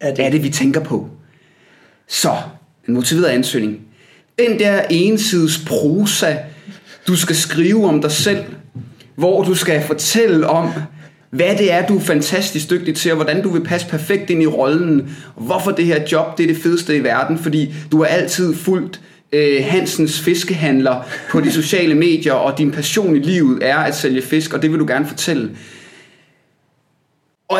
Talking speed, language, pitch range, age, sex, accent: 180 wpm, Danish, 140-175 Hz, 30-49, male, native